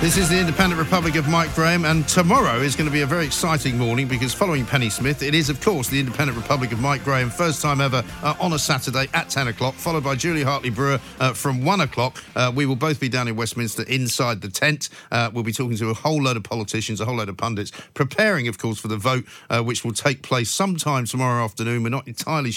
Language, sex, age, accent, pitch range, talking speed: English, male, 50-69, British, 120-150 Hz, 250 wpm